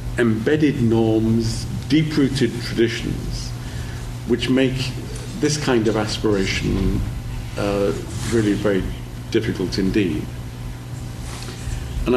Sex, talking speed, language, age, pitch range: male, 80 wpm, English, 50-69, 105-125 Hz